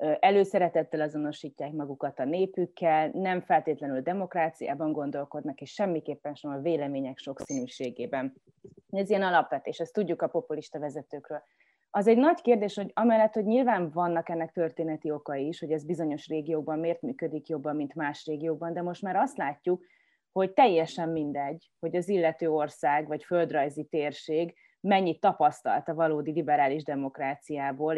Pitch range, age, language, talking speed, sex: 150-175 Hz, 30-49, Hungarian, 150 wpm, female